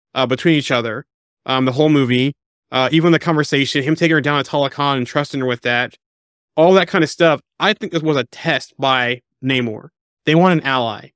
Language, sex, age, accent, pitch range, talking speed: English, male, 30-49, American, 130-155 Hz, 215 wpm